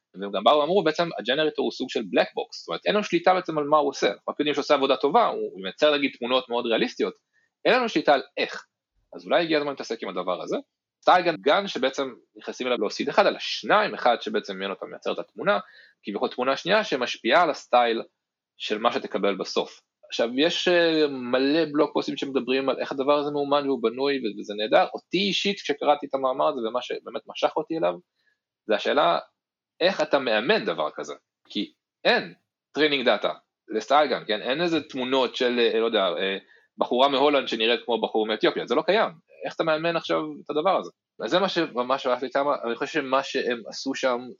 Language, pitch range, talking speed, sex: Hebrew, 120-155 Hz, 160 wpm, male